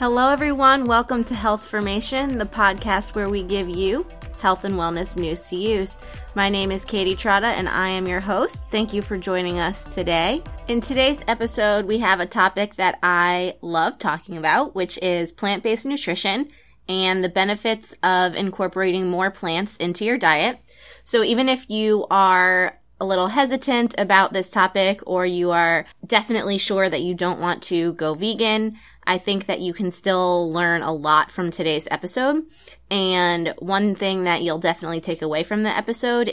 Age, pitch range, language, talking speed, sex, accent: 20-39, 175-215 Hz, English, 175 wpm, female, American